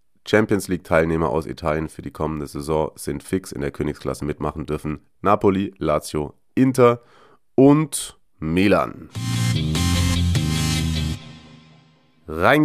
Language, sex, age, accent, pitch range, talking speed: German, male, 30-49, German, 80-110 Hz, 95 wpm